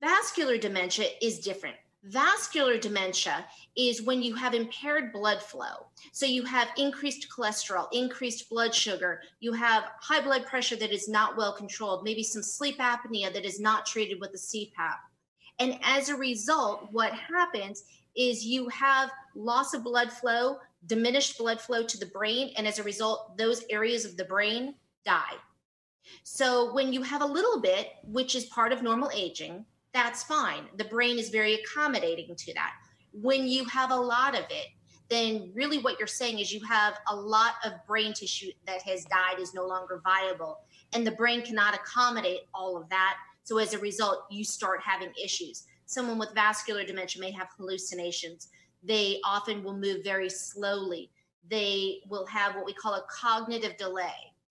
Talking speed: 175 wpm